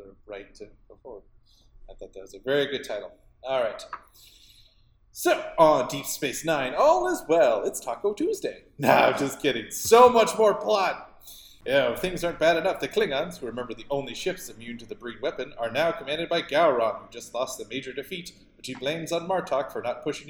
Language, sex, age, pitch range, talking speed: English, male, 30-49, 120-155 Hz, 205 wpm